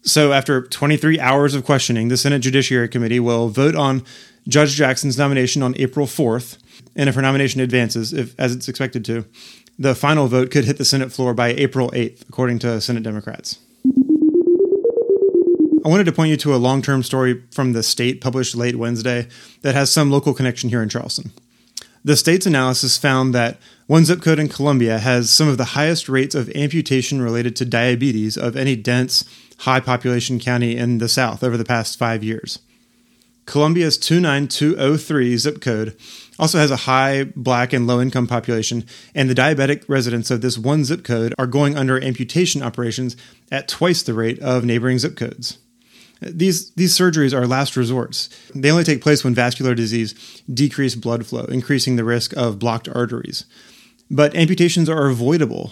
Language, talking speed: English, 175 wpm